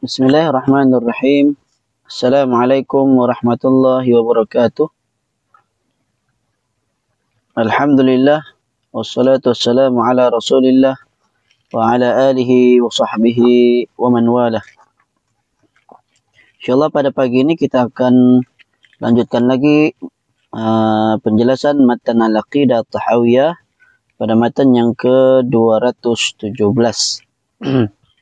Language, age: Malay, 20-39